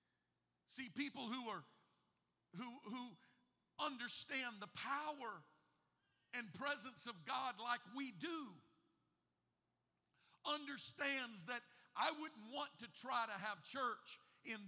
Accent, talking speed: American, 110 wpm